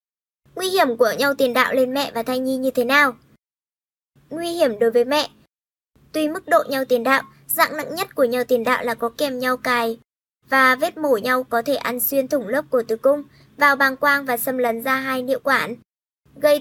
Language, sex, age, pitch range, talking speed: Vietnamese, male, 20-39, 250-300 Hz, 220 wpm